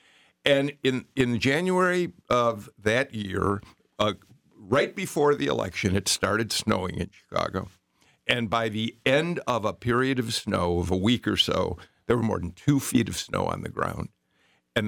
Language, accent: English, American